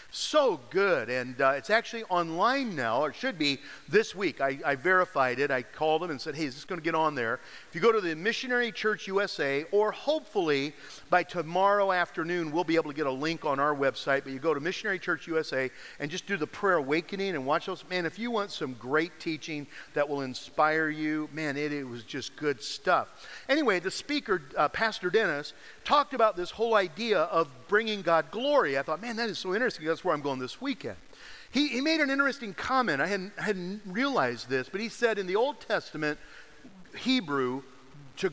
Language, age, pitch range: English, 50-69, 150-215 Hz